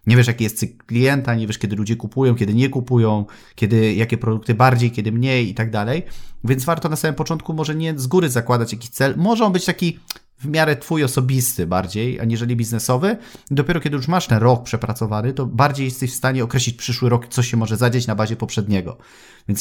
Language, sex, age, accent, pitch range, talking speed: Polish, male, 30-49, native, 115-135 Hz, 215 wpm